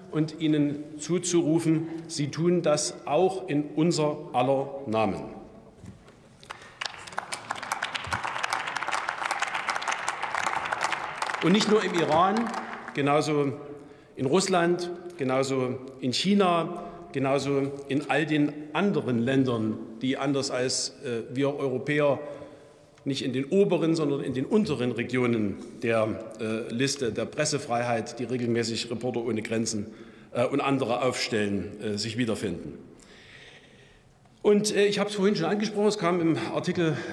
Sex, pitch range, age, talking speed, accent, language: male, 130-170 Hz, 50-69, 110 wpm, German, German